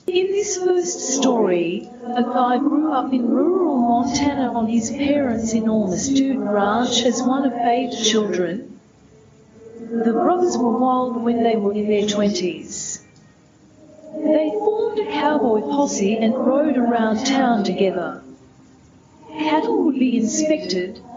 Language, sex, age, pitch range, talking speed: English, female, 40-59, 220-290 Hz, 130 wpm